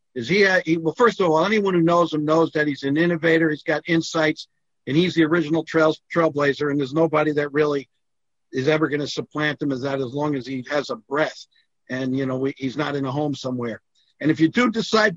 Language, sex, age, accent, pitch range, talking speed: English, male, 50-69, American, 150-170 Hz, 240 wpm